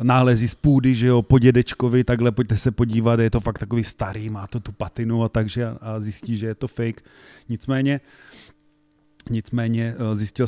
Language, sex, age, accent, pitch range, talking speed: Czech, male, 30-49, native, 110-130 Hz, 185 wpm